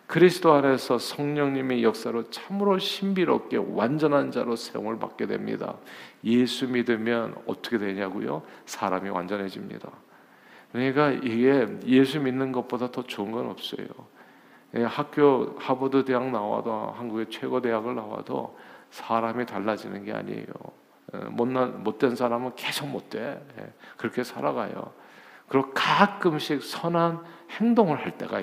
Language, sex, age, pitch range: Korean, male, 50-69, 115-170 Hz